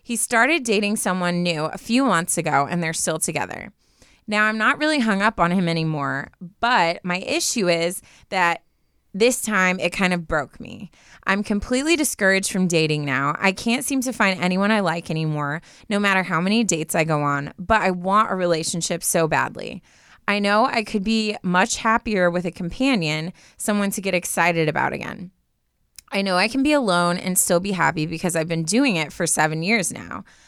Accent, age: American, 20-39